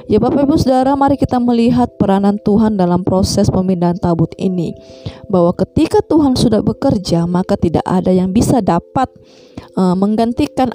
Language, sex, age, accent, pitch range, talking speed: Indonesian, female, 20-39, native, 195-280 Hz, 145 wpm